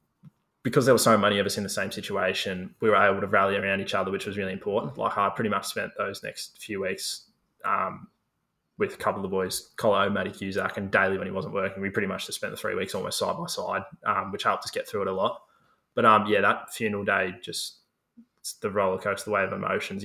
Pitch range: 100-115 Hz